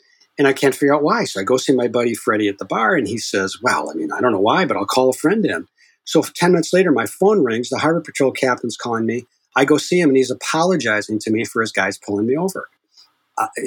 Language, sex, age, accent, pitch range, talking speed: English, male, 40-59, American, 125-155 Hz, 270 wpm